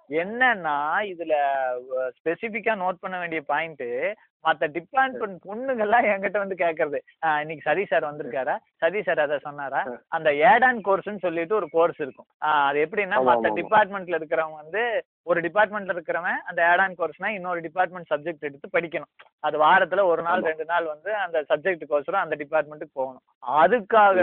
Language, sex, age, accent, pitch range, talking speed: Tamil, male, 20-39, native, 155-205 Hz, 150 wpm